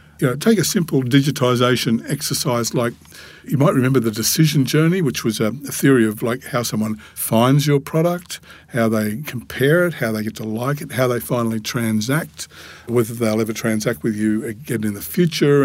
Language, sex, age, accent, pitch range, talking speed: English, male, 50-69, Australian, 110-140 Hz, 190 wpm